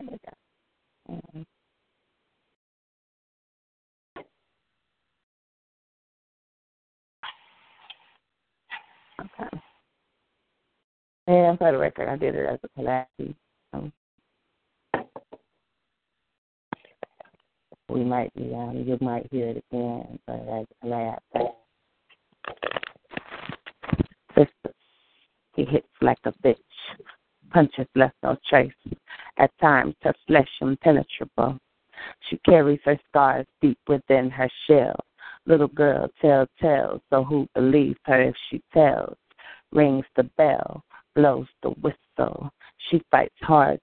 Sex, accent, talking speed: female, American, 90 wpm